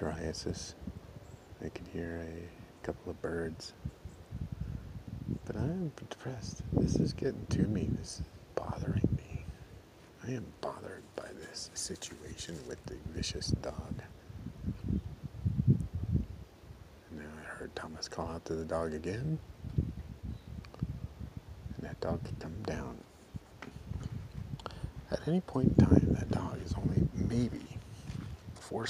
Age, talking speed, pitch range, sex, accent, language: 50-69, 115 wpm, 85-115 Hz, male, American, English